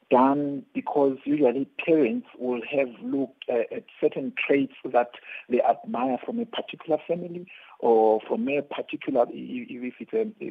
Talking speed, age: 145 wpm, 50-69